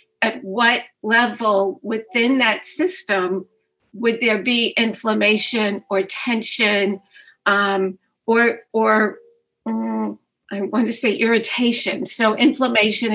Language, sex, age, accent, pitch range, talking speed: English, female, 50-69, American, 205-240 Hz, 105 wpm